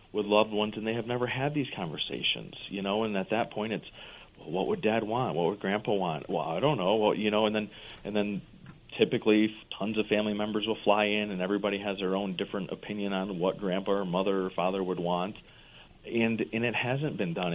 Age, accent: 40-59, American